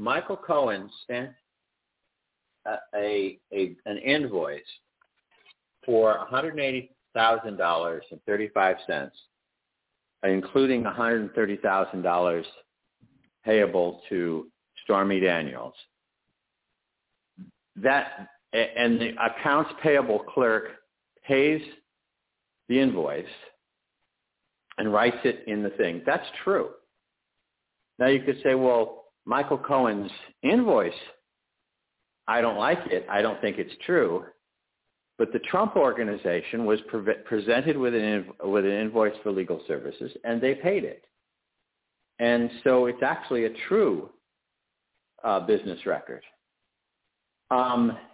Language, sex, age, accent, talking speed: English, male, 50-69, American, 95 wpm